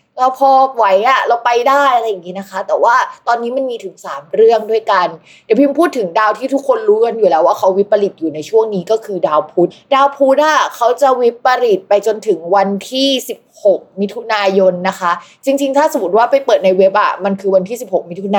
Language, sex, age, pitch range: Thai, female, 20-39, 195-255 Hz